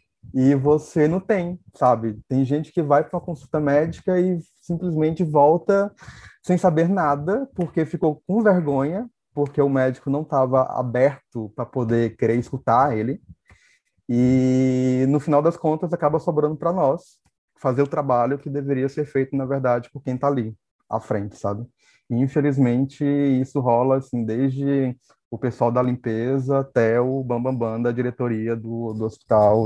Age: 20-39